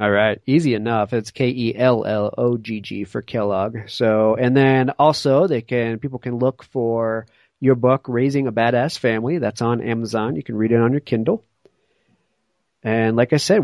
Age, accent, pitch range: 40-59, American, 110-130 Hz